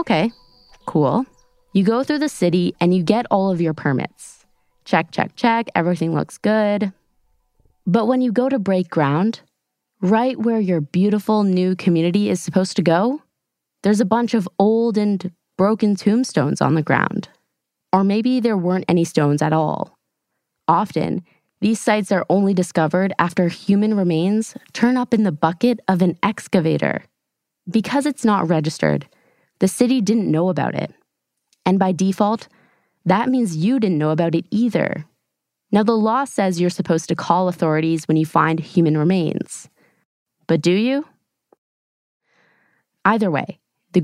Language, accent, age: English, American, 20-39